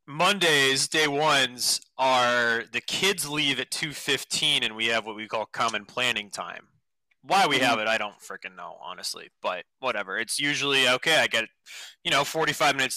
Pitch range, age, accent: 120-160 Hz, 20-39, American